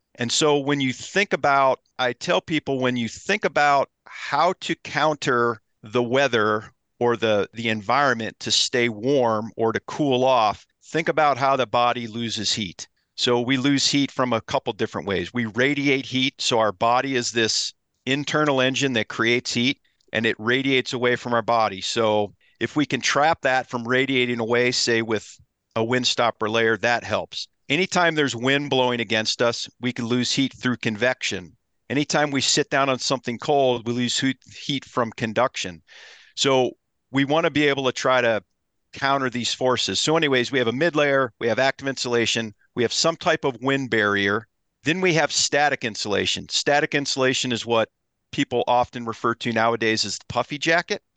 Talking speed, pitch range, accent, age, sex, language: 180 wpm, 115-140 Hz, American, 50-69, male, English